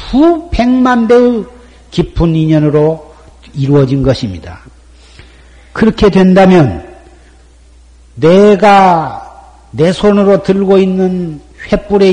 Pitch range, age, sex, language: 115-190 Hz, 50-69, male, Korean